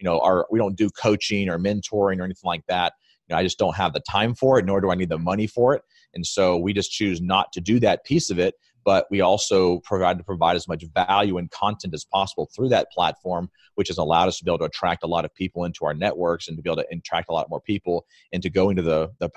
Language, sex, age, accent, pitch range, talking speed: English, male, 30-49, American, 85-100 Hz, 270 wpm